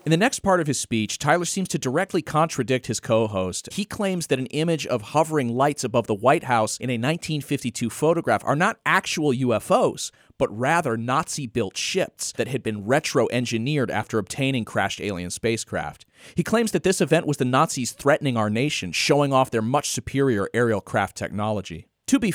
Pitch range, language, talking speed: 115-155 Hz, English, 185 wpm